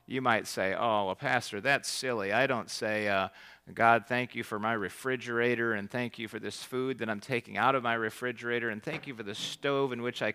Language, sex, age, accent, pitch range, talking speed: English, male, 40-59, American, 115-135 Hz, 230 wpm